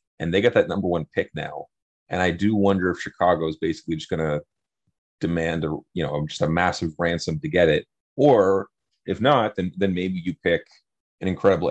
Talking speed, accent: 205 wpm, American